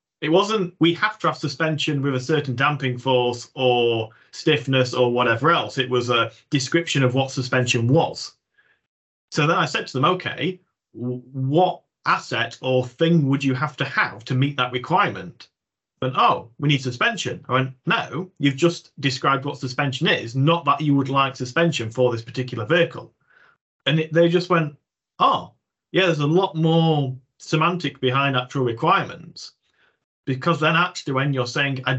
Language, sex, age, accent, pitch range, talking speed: English, male, 40-59, British, 125-165 Hz, 170 wpm